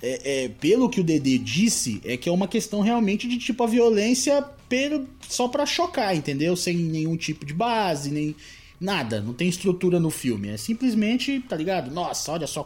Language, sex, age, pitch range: Portuguese, male, 20-39, 120-185 Hz